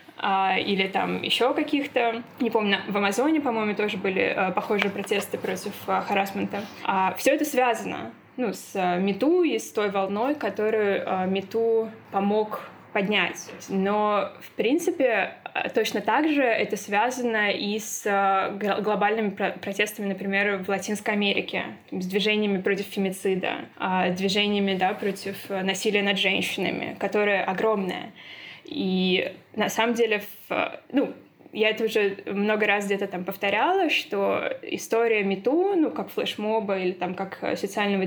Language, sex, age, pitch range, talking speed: Russian, female, 20-39, 195-225 Hz, 125 wpm